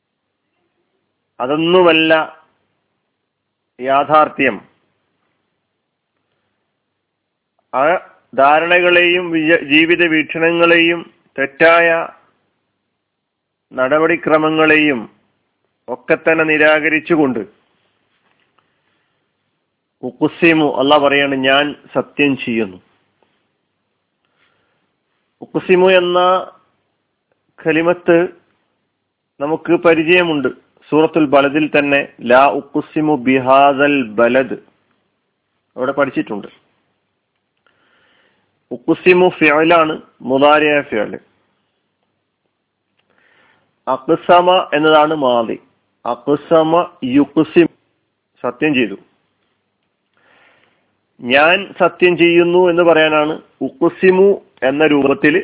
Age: 40-59